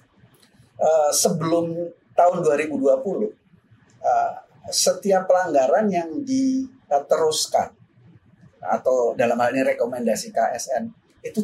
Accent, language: native, Indonesian